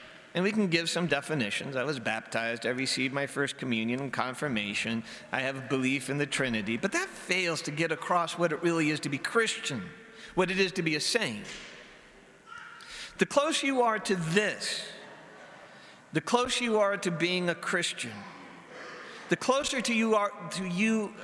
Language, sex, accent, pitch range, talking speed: English, male, American, 145-205 Hz, 175 wpm